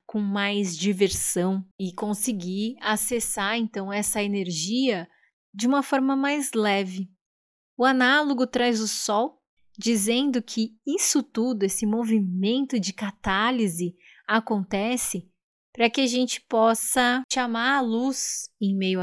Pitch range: 185-235 Hz